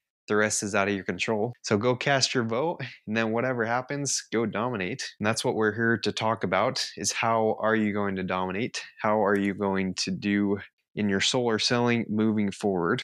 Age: 20-39